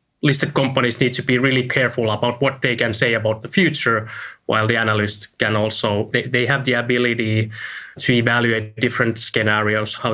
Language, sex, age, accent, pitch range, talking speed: English, male, 20-39, Finnish, 110-135 Hz, 180 wpm